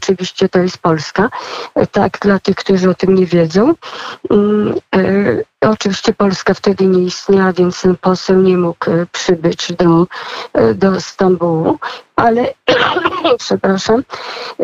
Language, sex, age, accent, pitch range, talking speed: Polish, female, 40-59, native, 190-215 Hz, 115 wpm